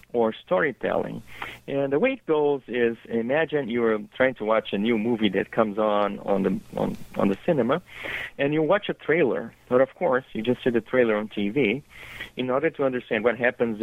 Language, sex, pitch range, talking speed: English, male, 110-145 Hz, 200 wpm